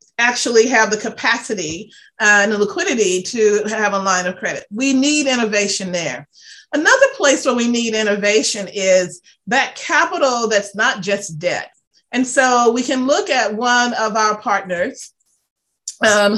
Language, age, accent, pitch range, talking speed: English, 30-49, American, 200-265 Hz, 150 wpm